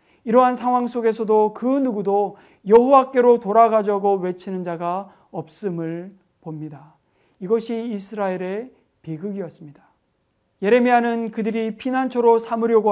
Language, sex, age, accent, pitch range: Korean, male, 40-59, native, 180-230 Hz